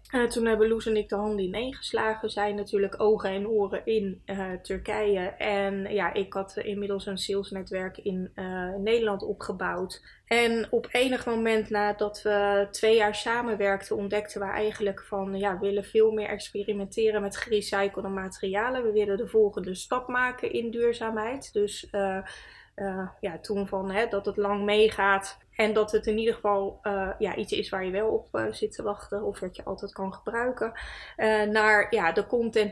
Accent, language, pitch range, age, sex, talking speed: Dutch, Dutch, 195-220 Hz, 20-39, female, 180 wpm